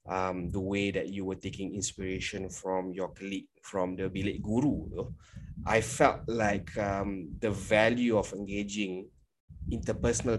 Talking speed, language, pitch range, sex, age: 140 wpm, English, 95-110 Hz, male, 20-39